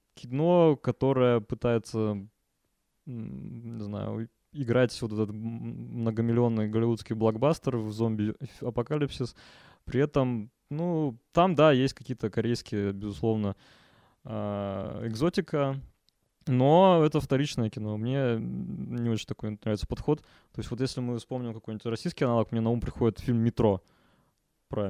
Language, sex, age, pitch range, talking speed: Russian, male, 20-39, 110-140 Hz, 120 wpm